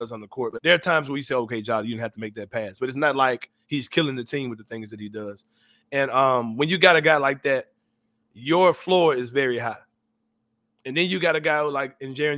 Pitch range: 125-165 Hz